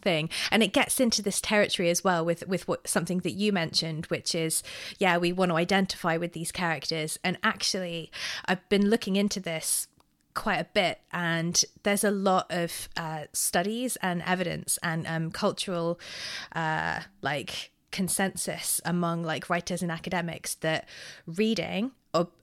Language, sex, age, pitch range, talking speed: English, female, 20-39, 165-195 Hz, 160 wpm